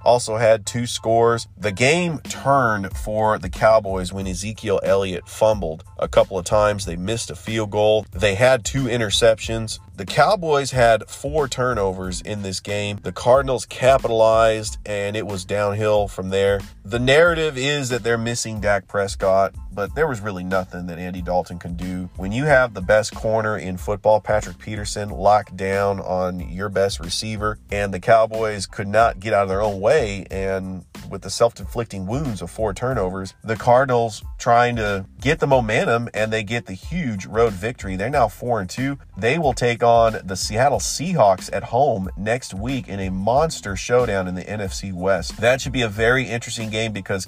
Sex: male